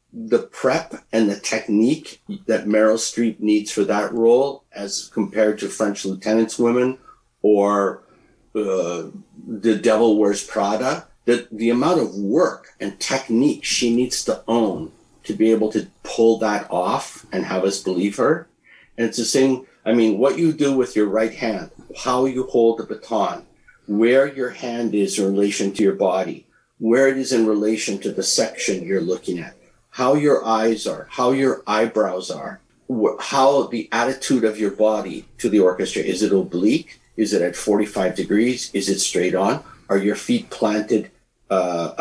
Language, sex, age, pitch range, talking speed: English, male, 50-69, 100-120 Hz, 170 wpm